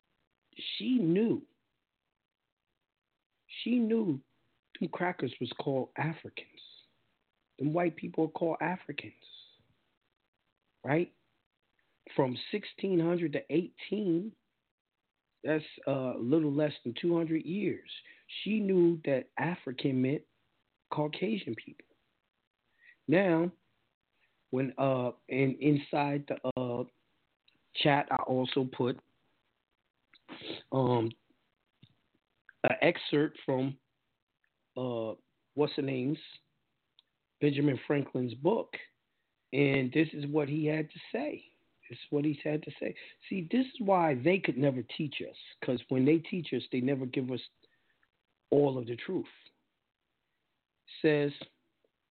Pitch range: 130-170 Hz